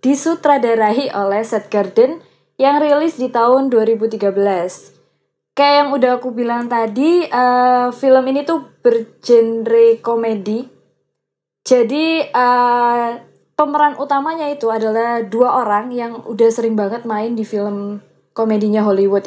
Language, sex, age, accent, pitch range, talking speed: Indonesian, female, 20-39, native, 220-270 Hz, 120 wpm